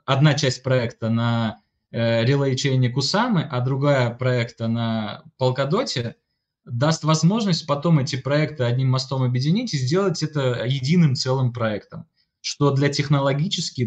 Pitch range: 120-155 Hz